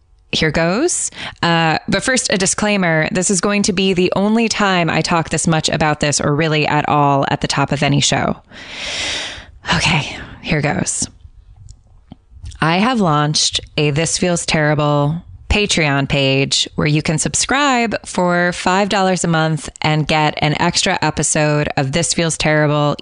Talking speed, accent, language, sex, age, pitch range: 155 wpm, American, English, female, 20-39, 150-190 Hz